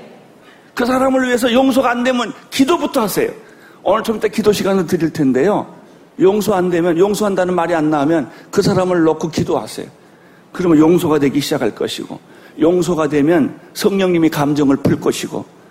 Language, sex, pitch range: Korean, male, 145-190 Hz